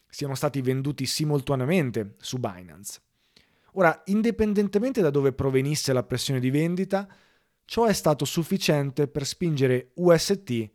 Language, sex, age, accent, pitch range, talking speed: Italian, male, 30-49, native, 120-160 Hz, 125 wpm